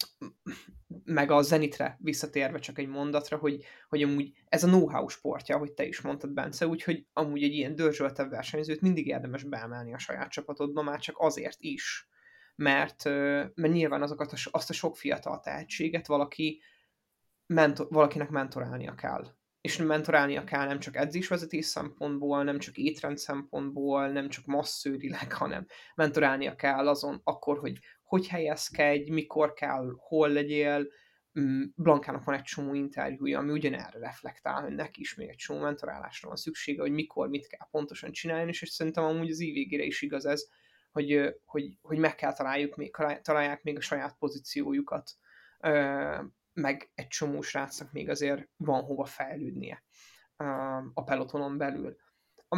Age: 20-39